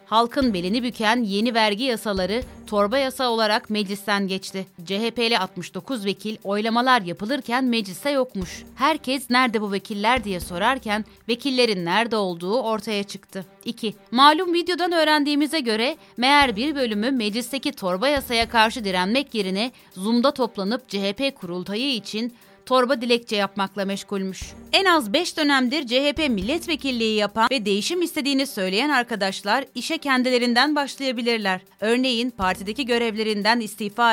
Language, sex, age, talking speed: Turkish, female, 30-49, 125 wpm